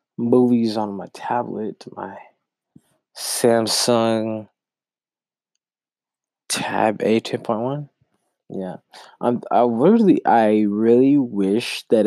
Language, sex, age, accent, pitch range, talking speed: English, male, 20-39, American, 100-120 Hz, 85 wpm